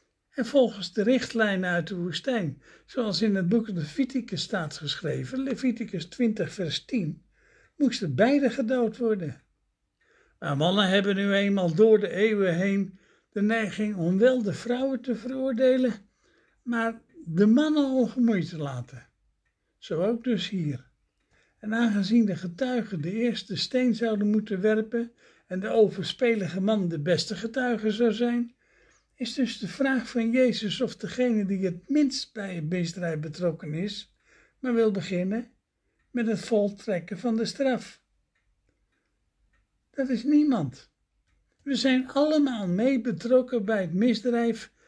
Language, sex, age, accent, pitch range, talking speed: Dutch, male, 60-79, Dutch, 190-245 Hz, 140 wpm